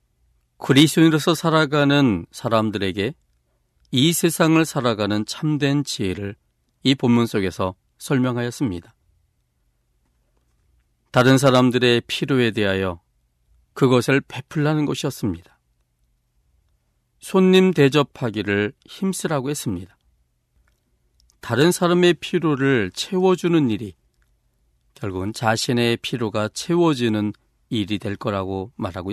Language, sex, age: Korean, male, 40-59